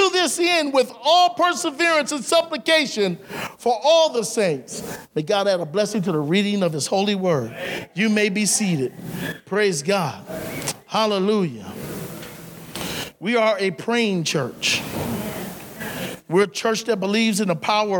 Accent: American